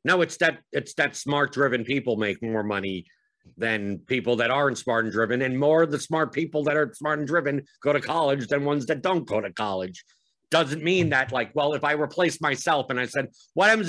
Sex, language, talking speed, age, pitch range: male, English, 230 wpm, 50-69, 115-150 Hz